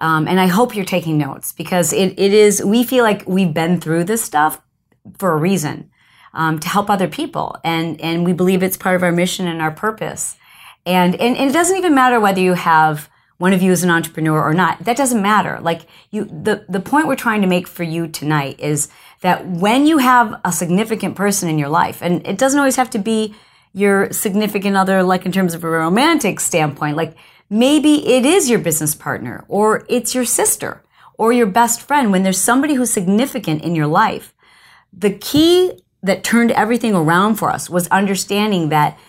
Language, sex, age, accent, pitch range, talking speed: English, female, 40-59, American, 165-220 Hz, 205 wpm